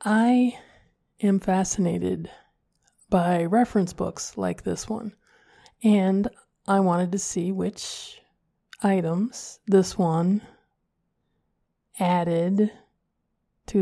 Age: 20-39